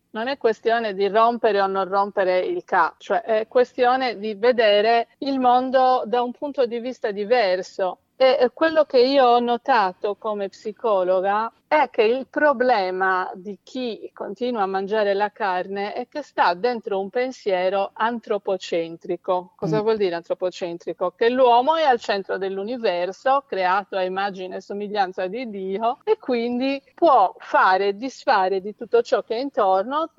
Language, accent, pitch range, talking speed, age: English, Italian, 190-245 Hz, 155 wpm, 50-69